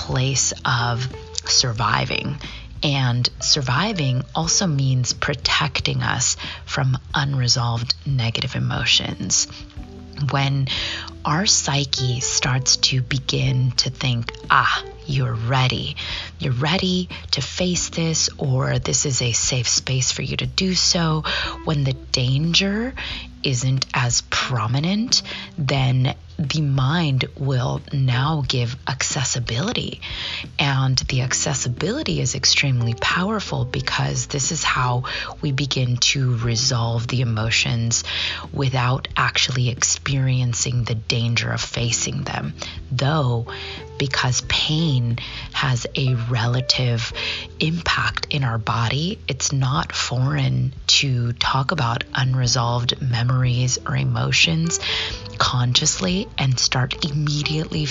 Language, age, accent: English, 20-39, American